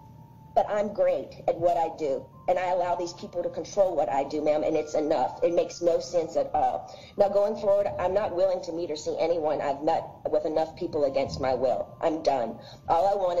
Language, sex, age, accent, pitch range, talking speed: Italian, female, 40-59, American, 165-205 Hz, 230 wpm